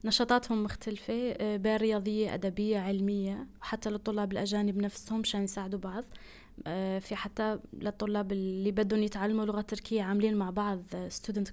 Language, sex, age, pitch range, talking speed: Arabic, female, 20-39, 210-245 Hz, 130 wpm